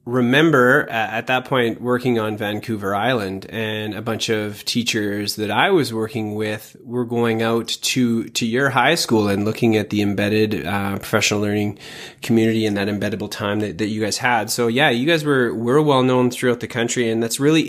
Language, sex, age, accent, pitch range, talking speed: English, male, 20-39, American, 110-135 Hz, 195 wpm